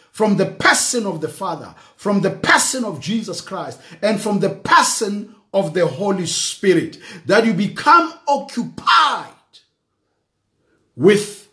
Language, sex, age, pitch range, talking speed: English, male, 50-69, 155-230 Hz, 130 wpm